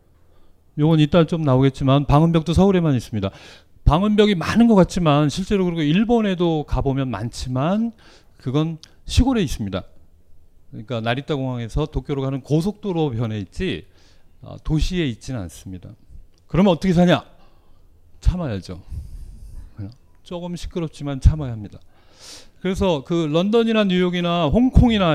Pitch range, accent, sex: 100-160 Hz, native, male